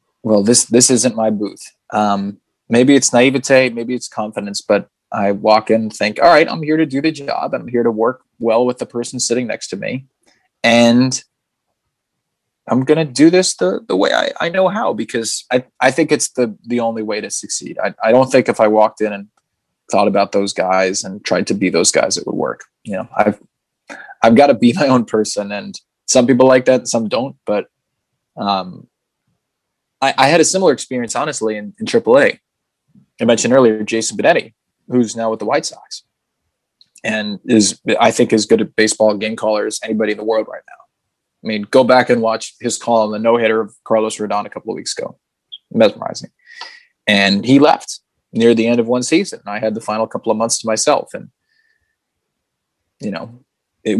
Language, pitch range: English, 110-130 Hz